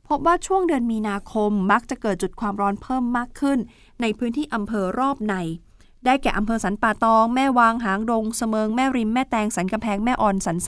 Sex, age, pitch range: female, 20-39, 195-240 Hz